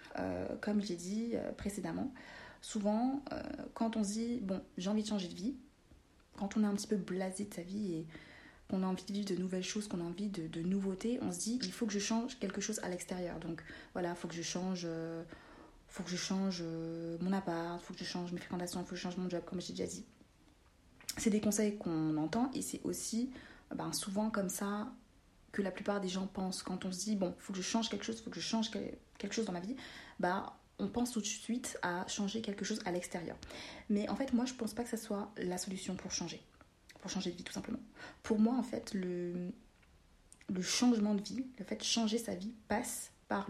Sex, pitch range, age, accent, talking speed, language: female, 180-220 Hz, 30-49, French, 250 wpm, French